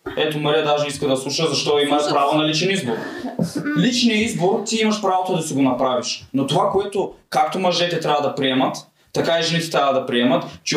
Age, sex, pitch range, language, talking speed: 20-39, male, 135-190 Hz, English, 200 wpm